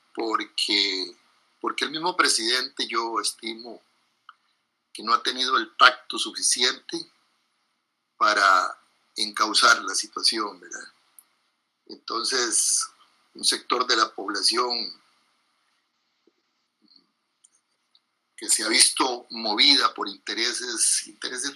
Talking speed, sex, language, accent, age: 90 wpm, male, Spanish, Mexican, 50-69